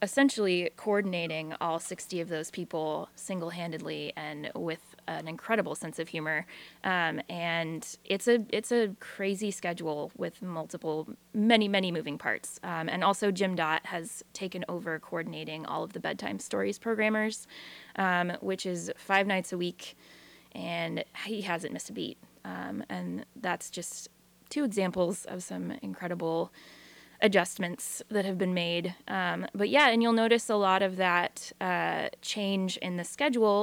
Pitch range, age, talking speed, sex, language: 170-205 Hz, 20-39, 155 wpm, female, English